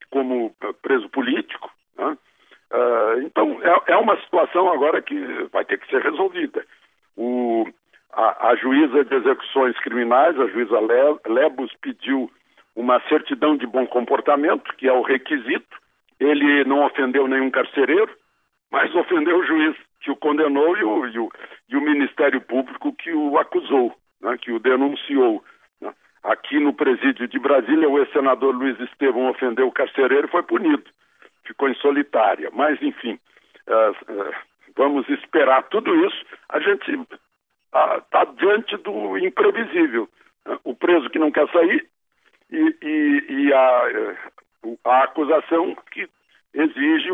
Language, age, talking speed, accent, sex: Portuguese, 60-79, 125 wpm, Brazilian, male